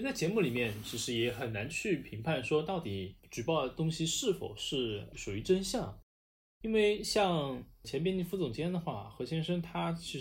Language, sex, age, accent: Chinese, male, 20-39, native